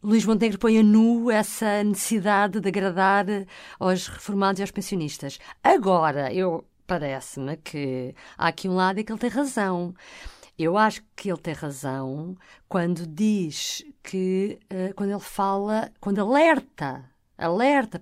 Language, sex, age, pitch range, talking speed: Portuguese, female, 50-69, 170-220 Hz, 145 wpm